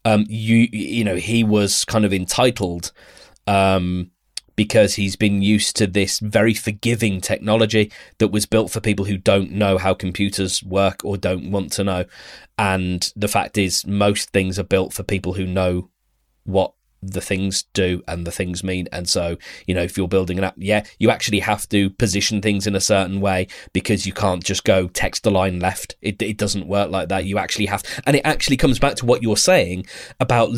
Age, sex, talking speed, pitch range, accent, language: 20-39, male, 200 wpm, 95-110 Hz, British, English